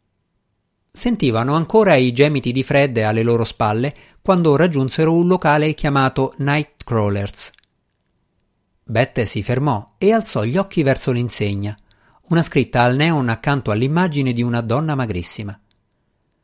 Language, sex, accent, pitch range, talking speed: Italian, male, native, 110-145 Hz, 125 wpm